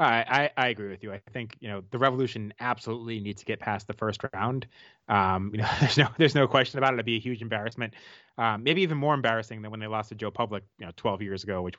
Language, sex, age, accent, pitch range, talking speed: English, male, 20-39, American, 105-125 Hz, 265 wpm